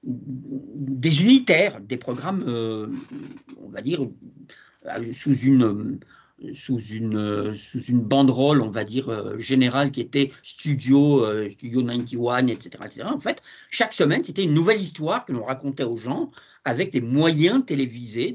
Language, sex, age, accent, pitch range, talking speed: French, male, 50-69, French, 120-155 Hz, 150 wpm